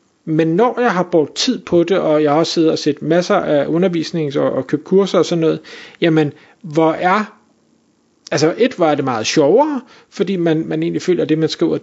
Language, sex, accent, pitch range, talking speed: Danish, male, native, 160-205 Hz, 215 wpm